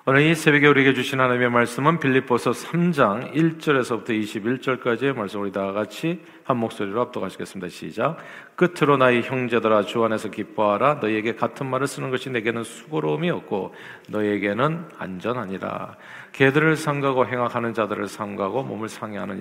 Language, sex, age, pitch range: Korean, male, 40-59, 110-140 Hz